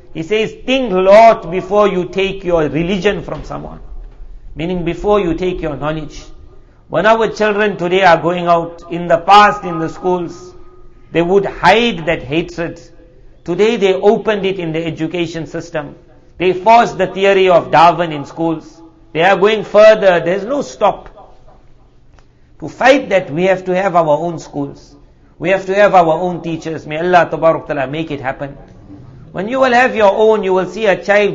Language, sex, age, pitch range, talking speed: English, male, 60-79, 160-205 Hz, 175 wpm